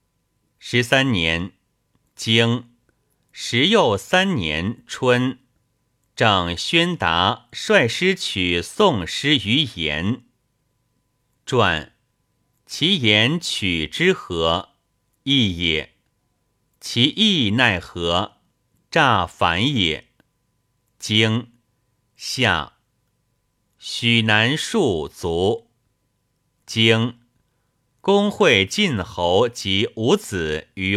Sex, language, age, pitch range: male, Chinese, 50-69, 95-125 Hz